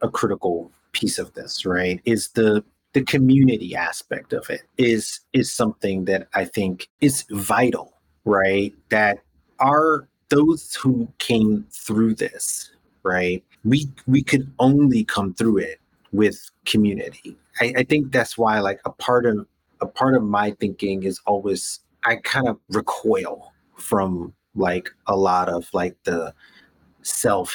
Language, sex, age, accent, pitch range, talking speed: English, male, 30-49, American, 95-125 Hz, 145 wpm